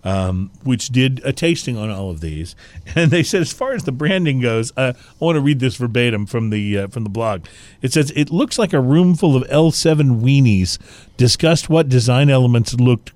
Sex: male